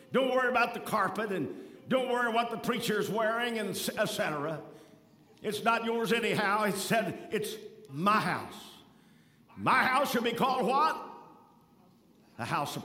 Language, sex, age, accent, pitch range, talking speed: English, male, 50-69, American, 165-230 Hz, 155 wpm